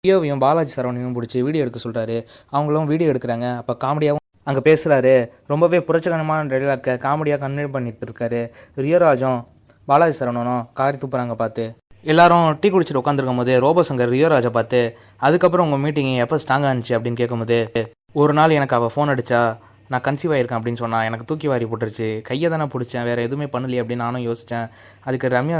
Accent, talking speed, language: native, 160 wpm, Tamil